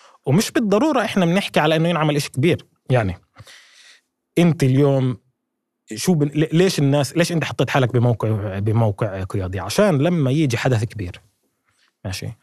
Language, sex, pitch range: Arabic, male, 115-150 Hz